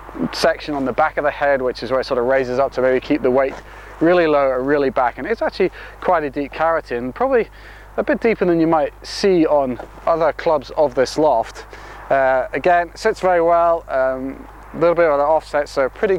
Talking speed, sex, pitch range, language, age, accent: 220 wpm, male, 135-180 Hz, English, 30-49, British